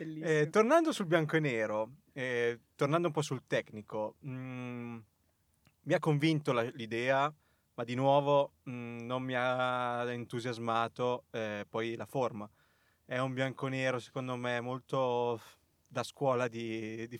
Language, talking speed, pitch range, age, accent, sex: Italian, 135 wpm, 115-135 Hz, 20-39, native, male